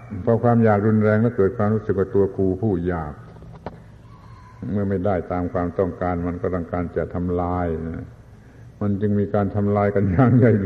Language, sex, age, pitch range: Thai, male, 70-89, 100-120 Hz